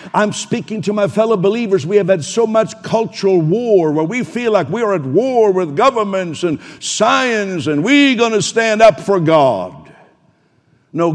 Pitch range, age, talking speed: 140-165 Hz, 60-79, 185 wpm